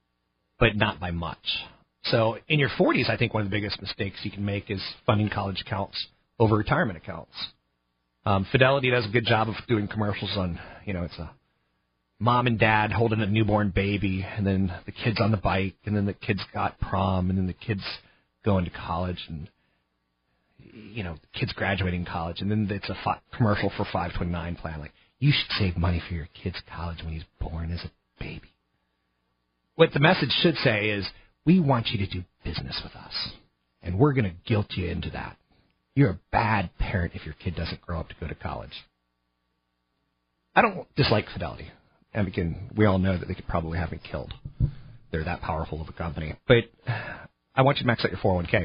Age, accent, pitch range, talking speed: 40-59, American, 85-120 Hz, 205 wpm